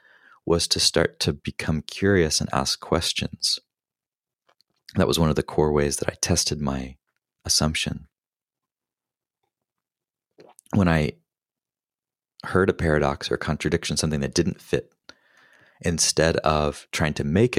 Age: 30-49